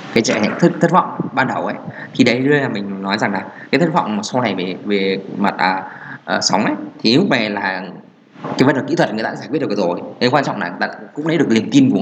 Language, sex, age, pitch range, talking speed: Vietnamese, male, 20-39, 105-140 Hz, 280 wpm